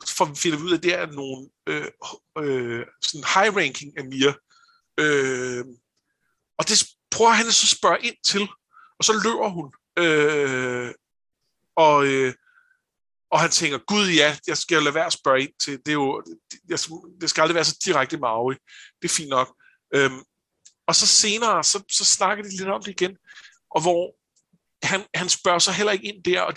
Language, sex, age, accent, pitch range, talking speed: Danish, male, 50-69, native, 150-200 Hz, 185 wpm